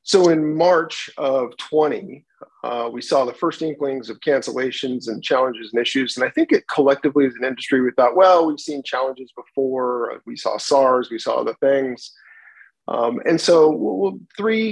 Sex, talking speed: male, 185 wpm